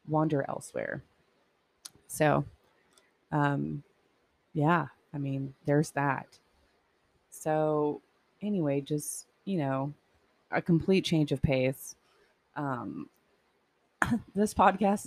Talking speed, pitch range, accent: 90 wpm, 145-175 Hz, American